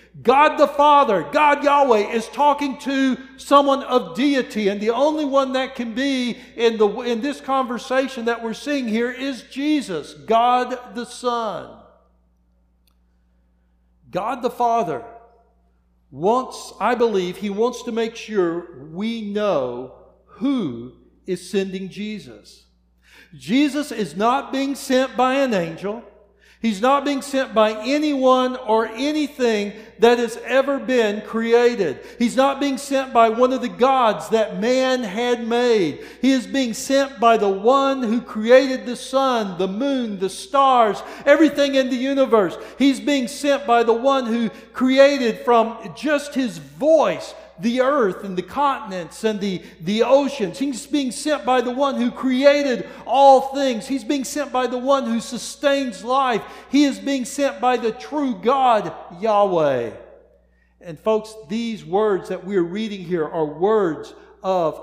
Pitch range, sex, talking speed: 210-270 Hz, male, 150 wpm